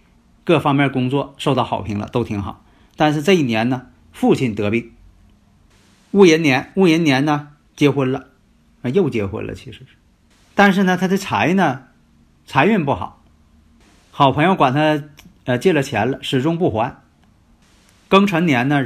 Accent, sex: native, male